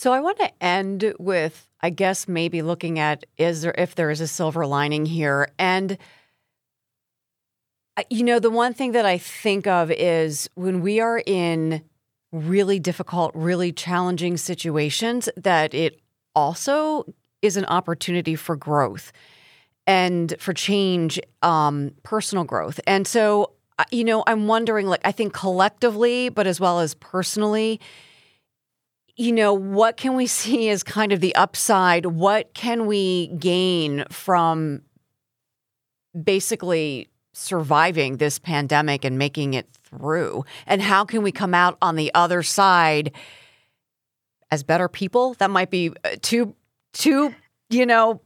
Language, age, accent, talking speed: English, 40-59, American, 140 wpm